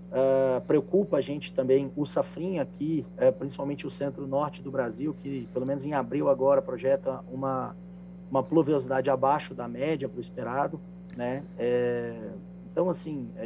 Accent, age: Brazilian, 40-59